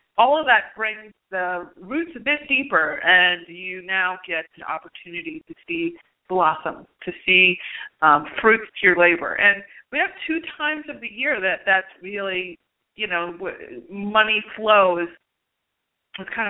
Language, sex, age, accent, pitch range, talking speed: English, female, 30-49, American, 175-235 Hz, 155 wpm